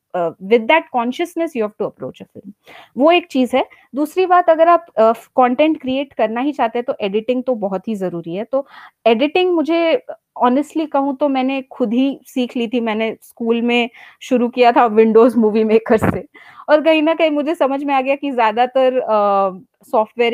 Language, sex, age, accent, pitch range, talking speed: Hindi, female, 20-39, native, 205-275 Hz, 185 wpm